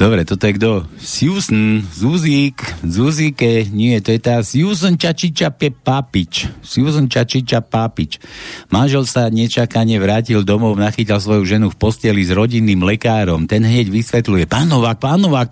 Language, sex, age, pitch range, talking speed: Slovak, male, 60-79, 105-145 Hz, 145 wpm